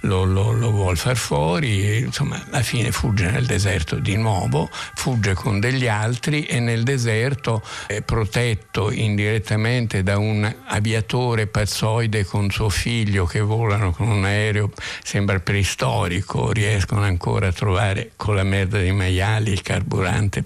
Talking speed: 145 wpm